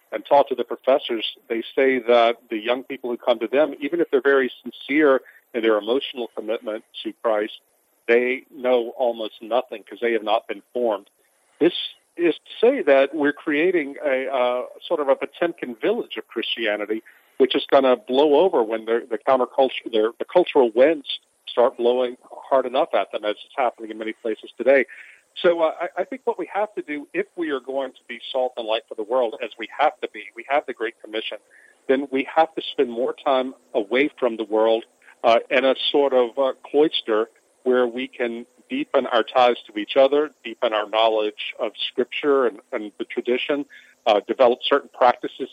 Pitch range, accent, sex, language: 115-145 Hz, American, male, English